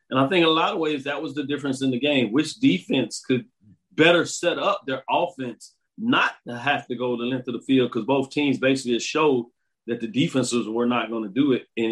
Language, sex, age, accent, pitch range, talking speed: English, male, 40-59, American, 120-145 Hz, 240 wpm